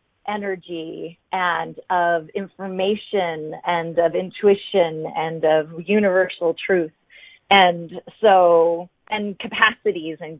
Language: English